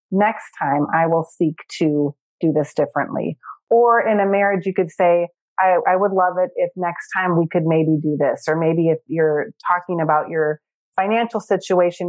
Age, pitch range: 30-49, 160-195 Hz